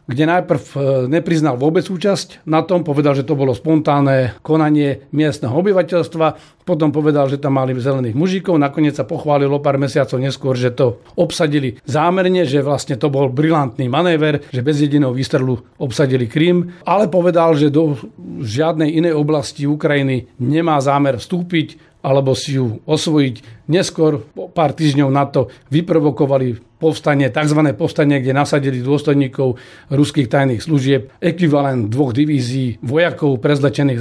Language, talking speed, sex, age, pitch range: Slovak, 140 wpm, male, 40-59, 135-160 Hz